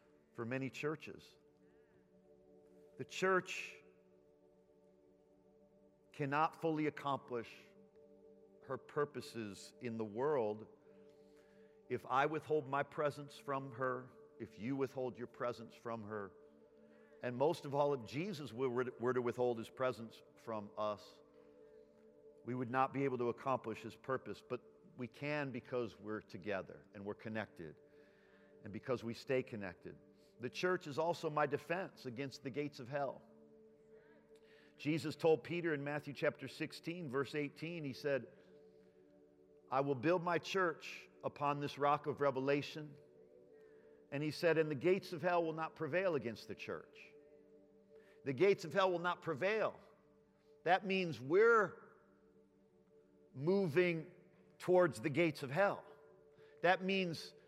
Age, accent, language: 50-69, American, English